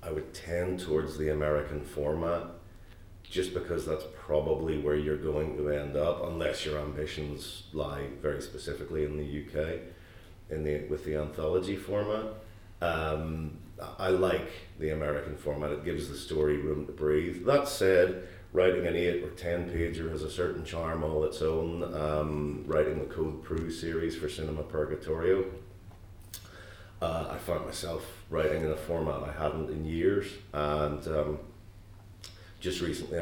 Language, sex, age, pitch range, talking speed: English, male, 40-59, 75-95 Hz, 155 wpm